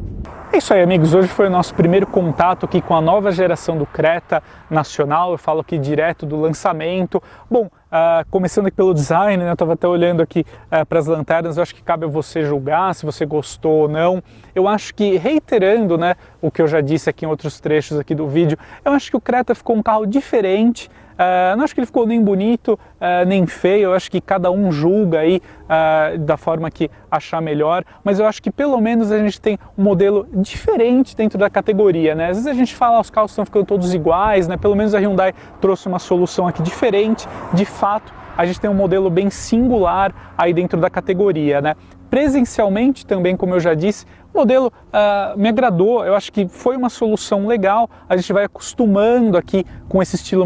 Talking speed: 205 wpm